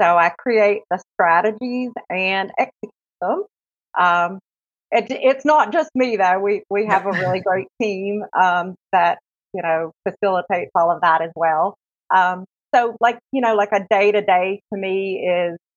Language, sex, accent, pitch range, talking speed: English, female, American, 175-205 Hz, 165 wpm